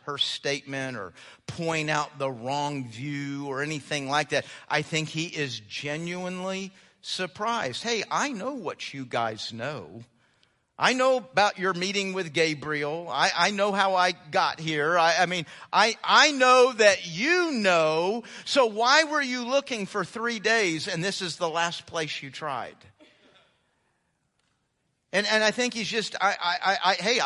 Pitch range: 150-215 Hz